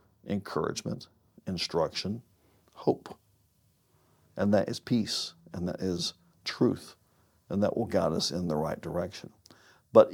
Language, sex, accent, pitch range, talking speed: English, male, American, 95-115 Hz, 125 wpm